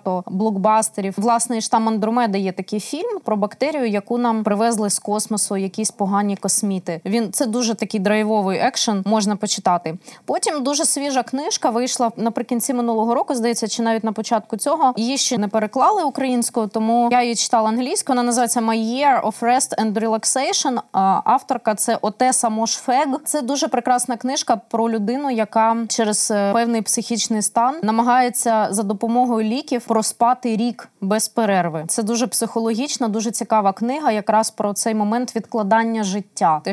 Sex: female